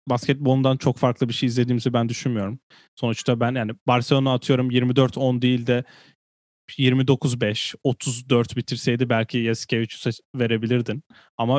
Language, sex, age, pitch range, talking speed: Turkish, male, 10-29, 115-135 Hz, 120 wpm